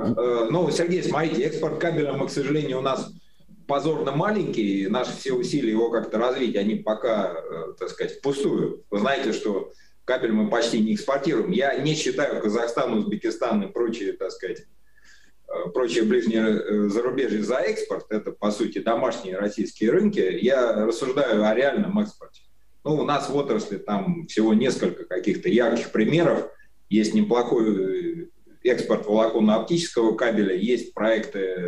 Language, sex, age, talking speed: Russian, male, 30-49, 140 wpm